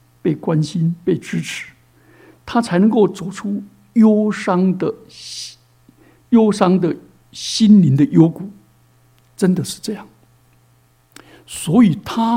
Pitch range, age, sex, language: 145-210 Hz, 60-79, male, Chinese